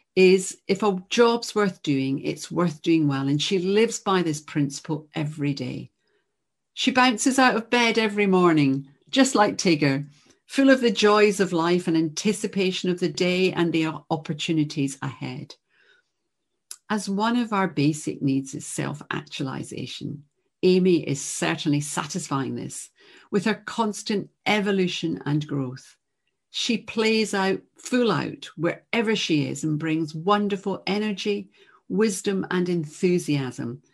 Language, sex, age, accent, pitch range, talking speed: English, female, 50-69, British, 155-215 Hz, 135 wpm